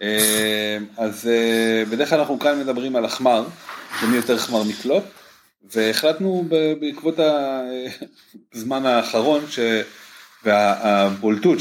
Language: Hebrew